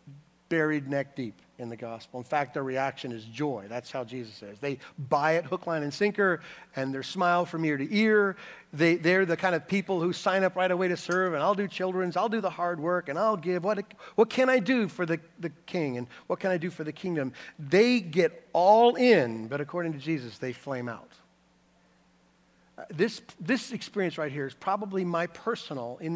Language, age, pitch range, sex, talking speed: English, 50-69, 130-190 Hz, male, 215 wpm